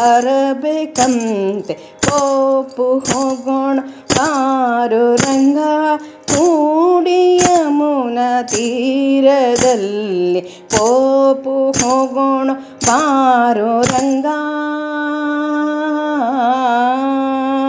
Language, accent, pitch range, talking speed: Kannada, native, 260-355 Hz, 50 wpm